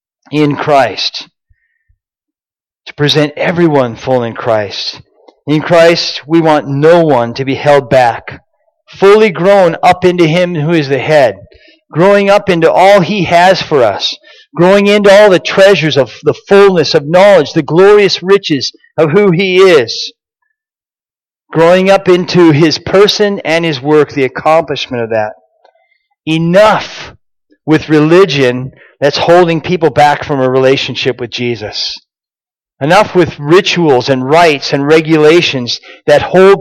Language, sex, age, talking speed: English, male, 40-59, 140 wpm